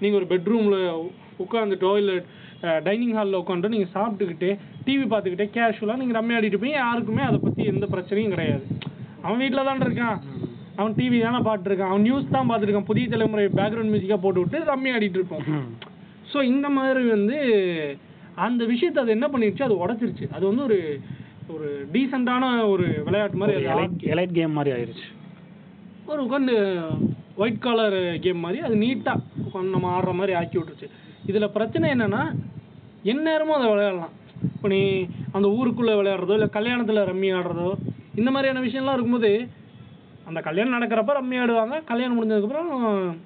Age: 30-49